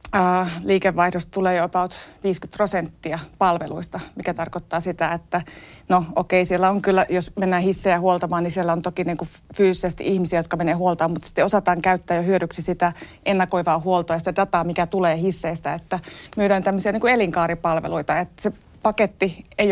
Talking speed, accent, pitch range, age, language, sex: 170 wpm, native, 175-195 Hz, 30-49, Finnish, female